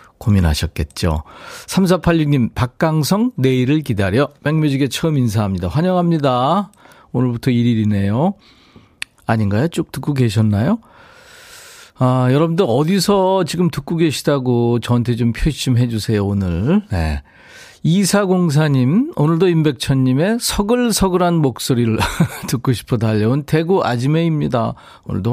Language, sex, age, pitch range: Korean, male, 40-59, 115-170 Hz